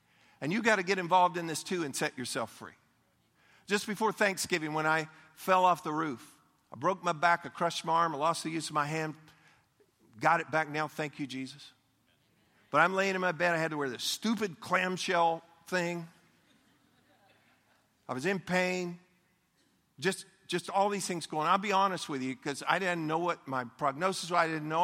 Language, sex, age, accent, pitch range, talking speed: English, male, 50-69, American, 155-185 Hz, 205 wpm